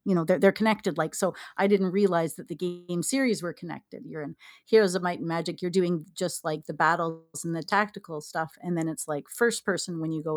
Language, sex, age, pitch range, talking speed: English, female, 40-59, 165-200 Hz, 245 wpm